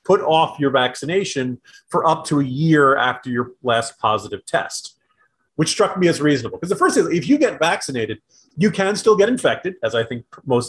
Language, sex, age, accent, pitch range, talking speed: English, male, 30-49, American, 130-200 Hz, 200 wpm